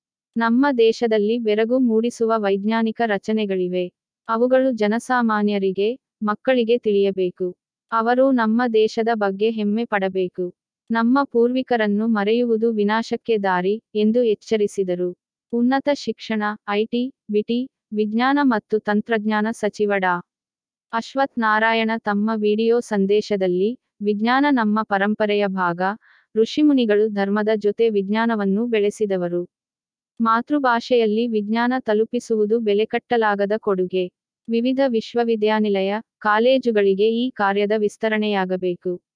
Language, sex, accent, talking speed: Kannada, female, native, 85 wpm